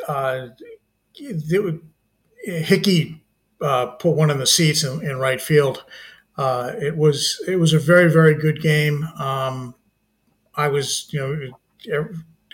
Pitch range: 130-160 Hz